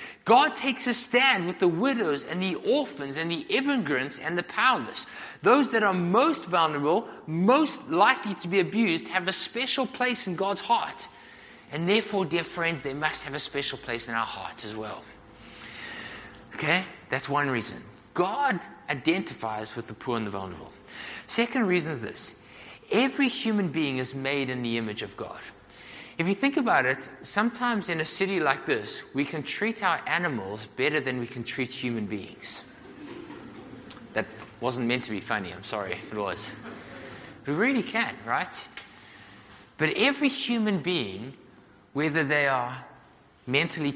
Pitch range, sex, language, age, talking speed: 125-195 Hz, male, English, 30-49, 165 wpm